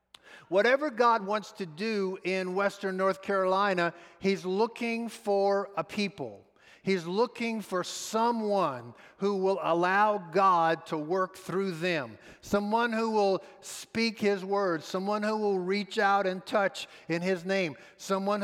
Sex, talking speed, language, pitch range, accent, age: male, 140 wpm, English, 180-220 Hz, American, 50-69